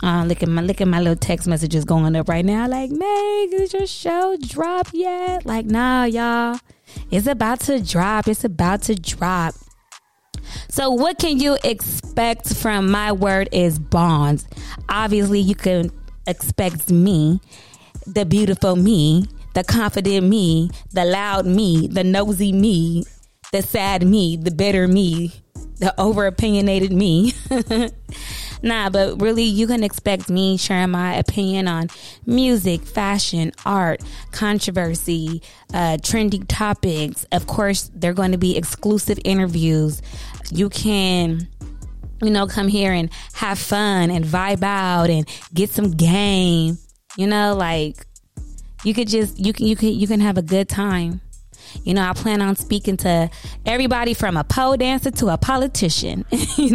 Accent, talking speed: American, 150 wpm